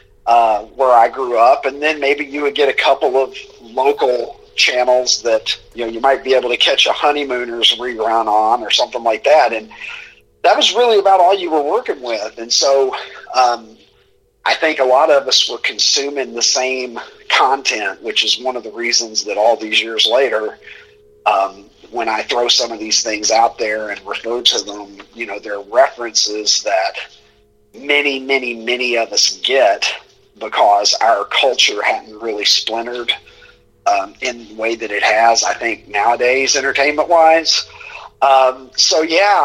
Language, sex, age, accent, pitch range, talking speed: English, male, 40-59, American, 115-190 Hz, 170 wpm